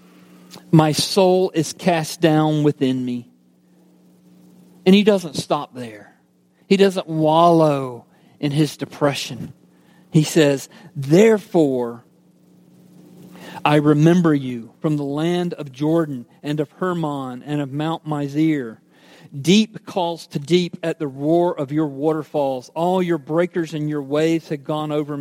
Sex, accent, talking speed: male, American, 130 wpm